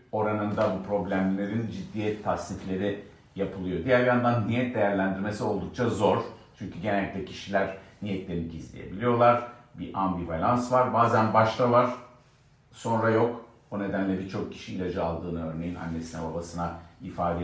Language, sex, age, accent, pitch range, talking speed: Turkish, male, 50-69, native, 90-120 Hz, 120 wpm